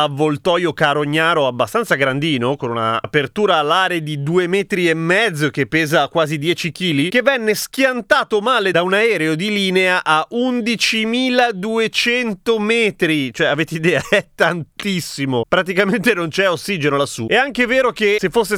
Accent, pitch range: native, 150-210 Hz